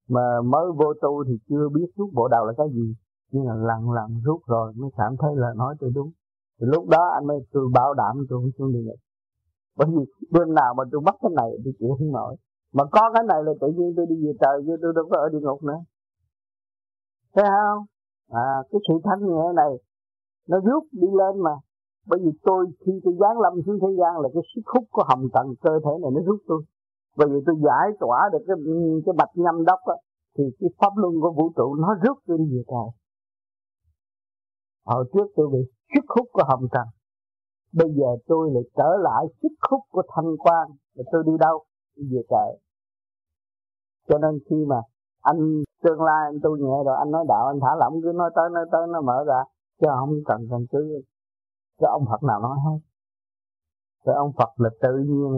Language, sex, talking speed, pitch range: Vietnamese, male, 215 wpm, 120-165 Hz